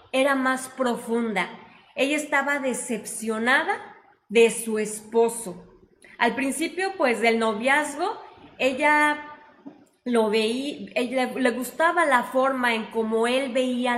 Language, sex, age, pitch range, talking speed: English, female, 30-49, 220-270 Hz, 110 wpm